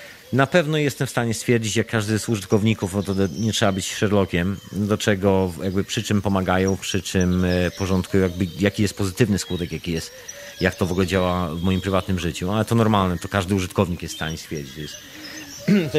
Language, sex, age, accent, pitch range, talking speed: Polish, male, 40-59, native, 95-120 Hz, 190 wpm